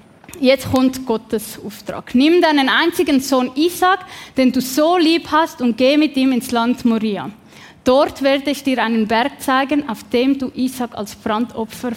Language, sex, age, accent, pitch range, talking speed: German, female, 10-29, Swiss, 245-335 Hz, 170 wpm